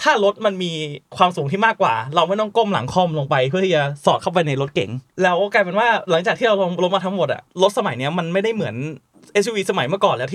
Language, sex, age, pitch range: Thai, male, 20-39, 150-200 Hz